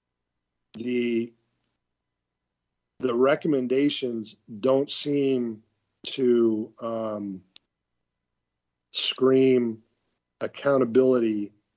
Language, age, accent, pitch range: English, 40-59, American, 105-125 Hz